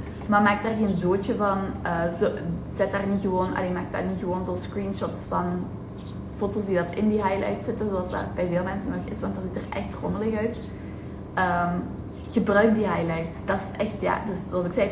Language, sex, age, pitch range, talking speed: Dutch, female, 20-39, 175-230 Hz, 210 wpm